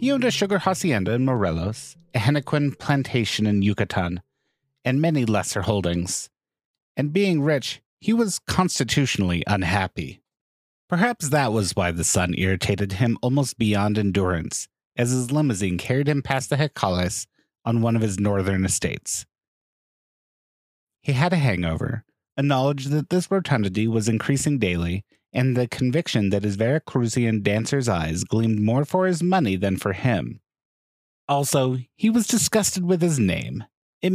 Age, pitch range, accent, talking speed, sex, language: 30-49, 100-150 Hz, American, 150 wpm, male, English